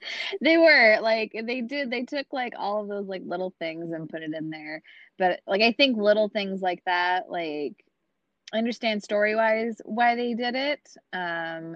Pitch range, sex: 160-220 Hz, female